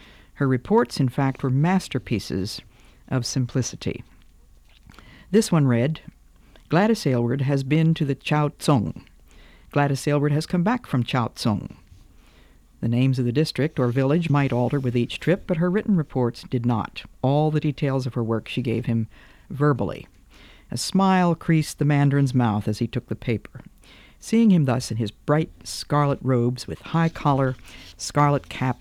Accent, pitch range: American, 115-160 Hz